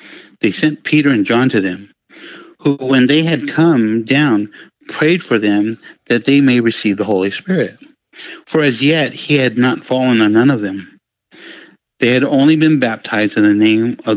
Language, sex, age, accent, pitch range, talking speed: English, male, 60-79, American, 110-150 Hz, 180 wpm